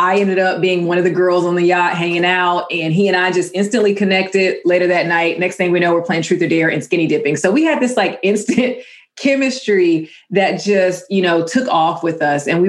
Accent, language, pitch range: American, English, 160-190 Hz